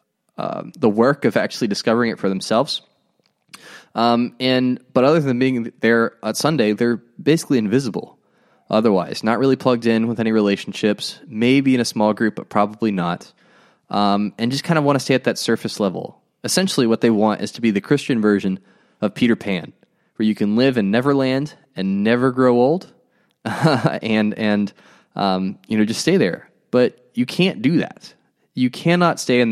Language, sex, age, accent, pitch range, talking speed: English, male, 20-39, American, 105-140 Hz, 180 wpm